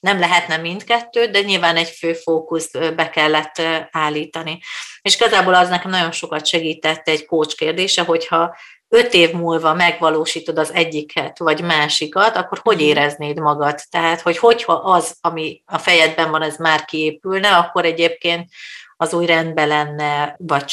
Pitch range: 155-180 Hz